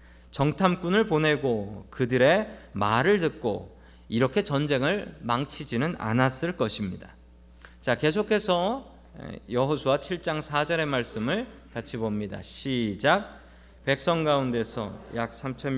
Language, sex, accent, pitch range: Korean, male, native, 110-160 Hz